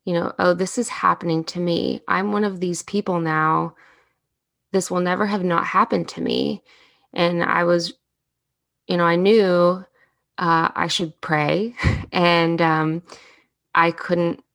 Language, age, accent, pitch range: English, 20-39, American, 155-180 Hz